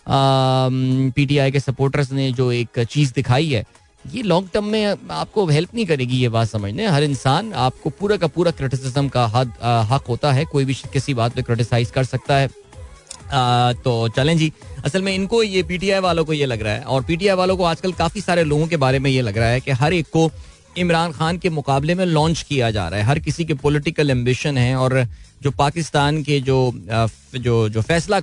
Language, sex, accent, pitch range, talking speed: Hindi, male, native, 125-155 Hz, 215 wpm